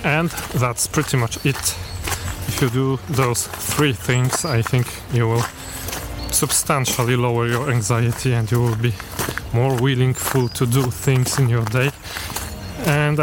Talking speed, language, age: 150 wpm, English, 30-49